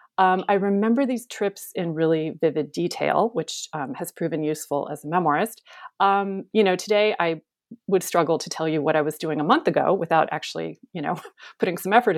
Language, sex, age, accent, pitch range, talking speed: English, female, 40-59, American, 160-225 Hz, 200 wpm